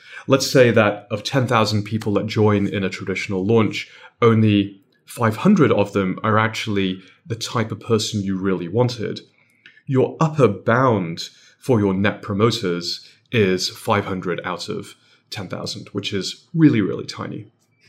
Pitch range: 95-115 Hz